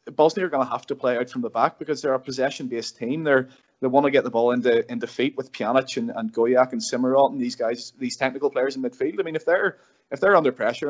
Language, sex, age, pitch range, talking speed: English, male, 20-39, 115-150 Hz, 270 wpm